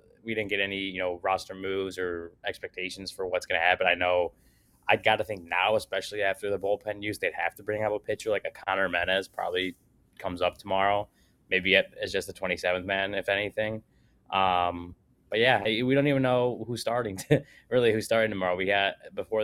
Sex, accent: male, American